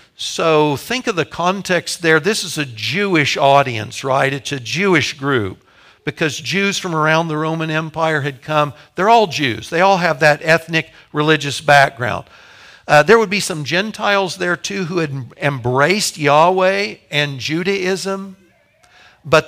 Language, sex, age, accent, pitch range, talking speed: English, male, 60-79, American, 145-185 Hz, 155 wpm